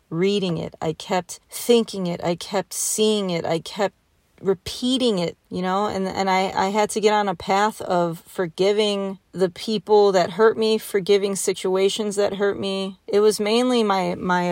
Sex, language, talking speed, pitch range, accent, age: female, English, 180 wpm, 175-210 Hz, American, 30-49